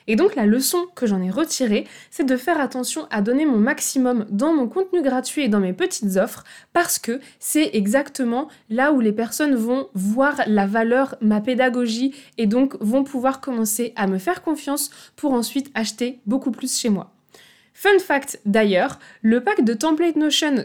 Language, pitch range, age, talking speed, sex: French, 220-290 Hz, 20-39, 185 wpm, female